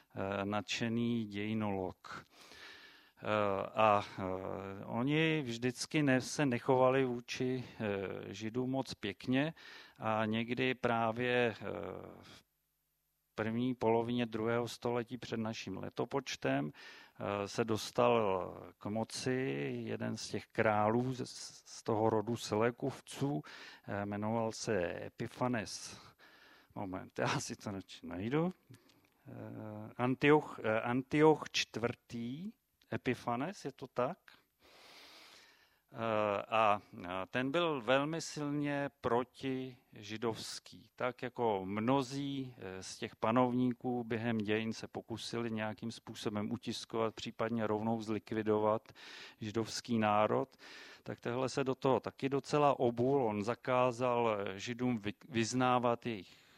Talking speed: 90 wpm